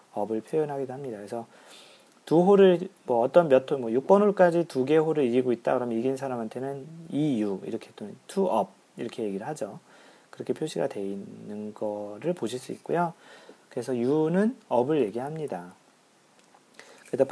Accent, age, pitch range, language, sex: native, 40-59, 115-170 Hz, Korean, male